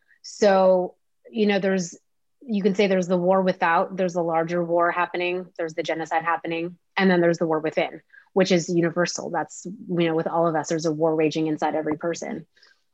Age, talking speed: 30-49, 200 wpm